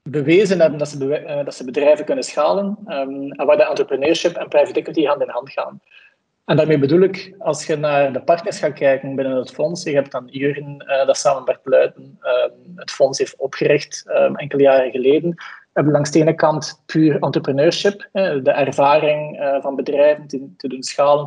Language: Dutch